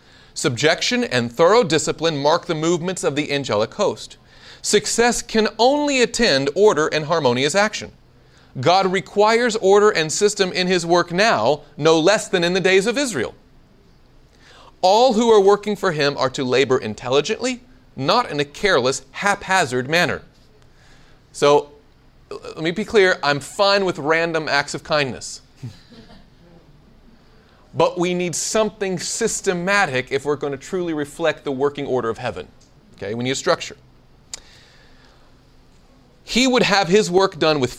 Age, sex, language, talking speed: 30-49, male, English, 145 wpm